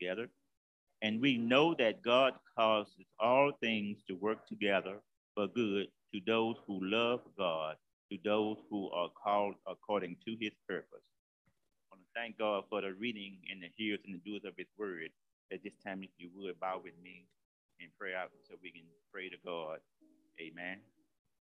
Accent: American